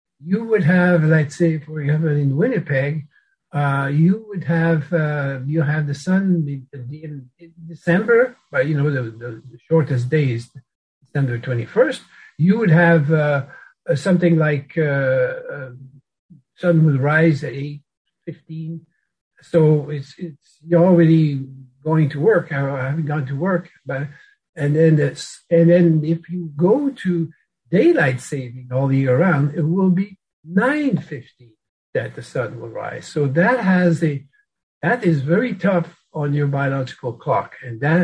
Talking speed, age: 150 wpm, 60-79